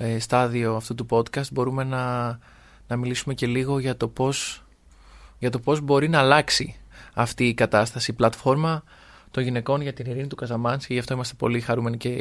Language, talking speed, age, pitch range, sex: Greek, 175 wpm, 20-39, 120-145 Hz, male